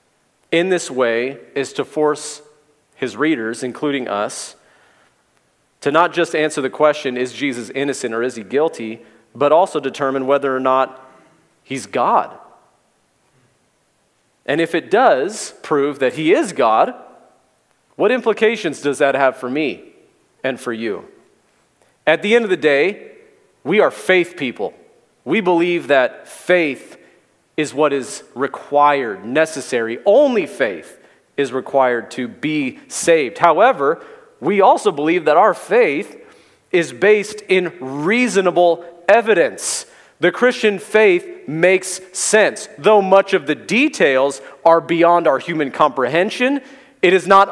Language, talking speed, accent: English, 135 wpm, American